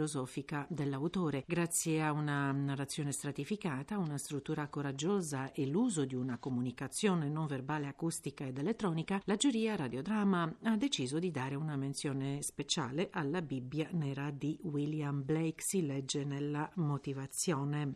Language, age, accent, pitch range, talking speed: Italian, 50-69, native, 140-185 Hz, 130 wpm